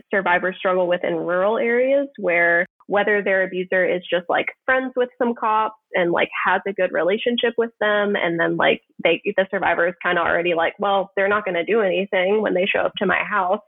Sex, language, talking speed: female, English, 220 wpm